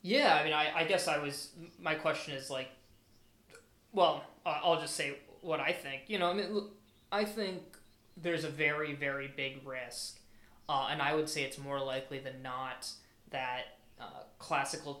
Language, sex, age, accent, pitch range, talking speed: English, male, 20-39, American, 130-155 Hz, 175 wpm